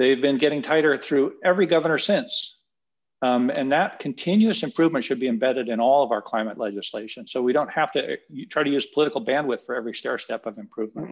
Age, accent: 50-69, American